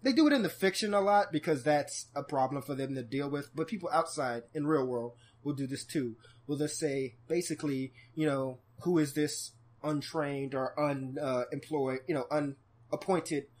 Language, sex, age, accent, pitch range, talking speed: English, male, 20-39, American, 130-175 Hz, 190 wpm